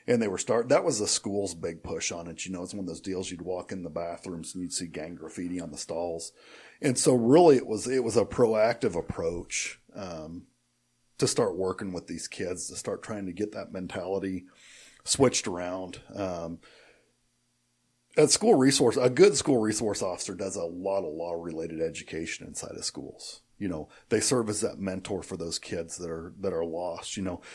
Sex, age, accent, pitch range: male, 40-59, American, 85-110 Hz